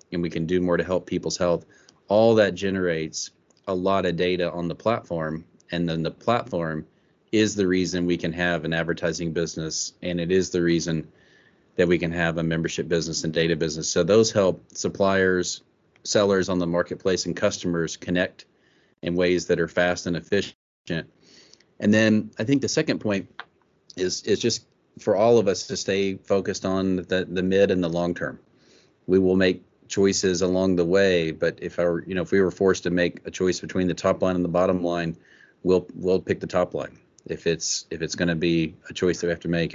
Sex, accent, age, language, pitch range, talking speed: male, American, 30-49, English, 85-95 Hz, 210 wpm